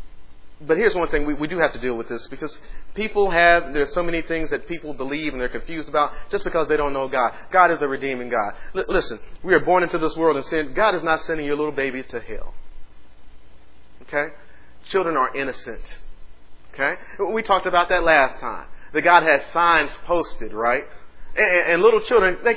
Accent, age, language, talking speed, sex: American, 40-59, English, 200 wpm, male